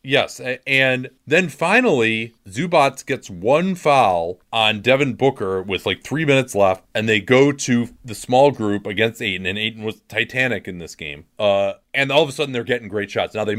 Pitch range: 110-145 Hz